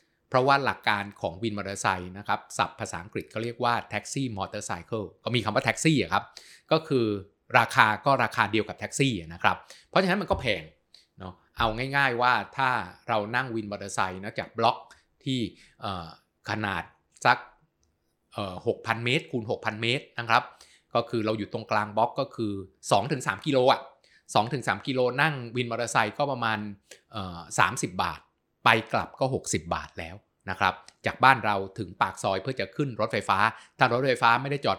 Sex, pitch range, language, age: male, 100-125 Hz, Thai, 20-39